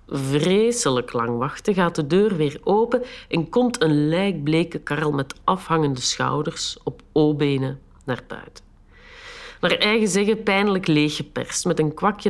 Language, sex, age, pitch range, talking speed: Dutch, female, 50-69, 145-210 Hz, 135 wpm